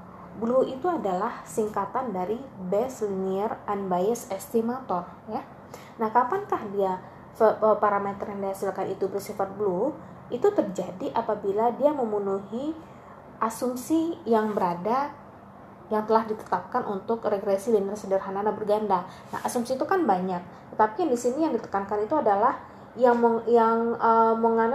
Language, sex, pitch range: Indonesian, female, 200-245 Hz